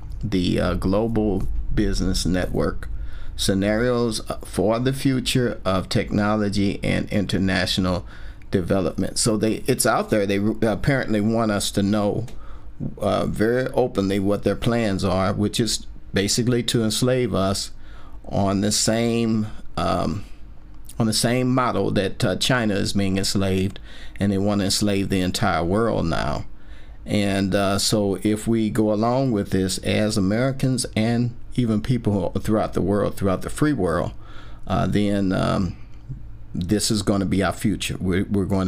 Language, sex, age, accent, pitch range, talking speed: English, male, 50-69, American, 95-115 Hz, 145 wpm